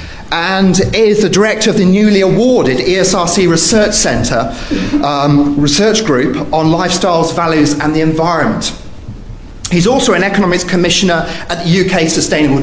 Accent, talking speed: British, 135 wpm